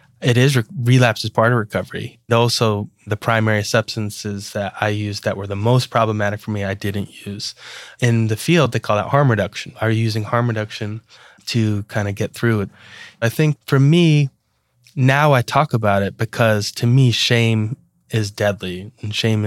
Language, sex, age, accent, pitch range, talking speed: English, male, 20-39, American, 105-125 Hz, 185 wpm